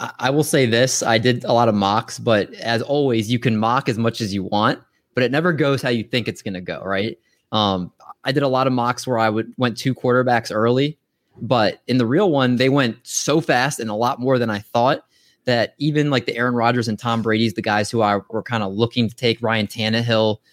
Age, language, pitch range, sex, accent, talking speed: 20-39, English, 110-130 Hz, male, American, 245 wpm